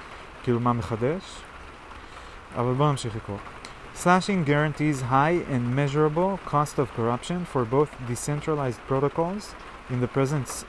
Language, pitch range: Hebrew, 120-145 Hz